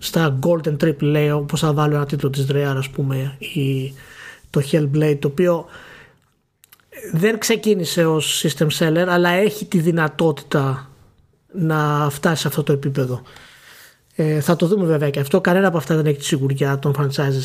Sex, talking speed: male, 170 wpm